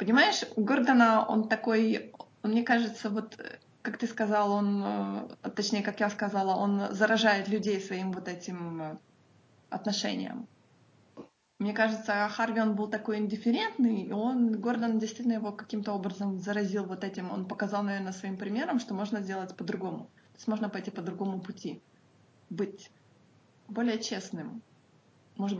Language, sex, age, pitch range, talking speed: Russian, female, 20-39, 190-220 Hz, 140 wpm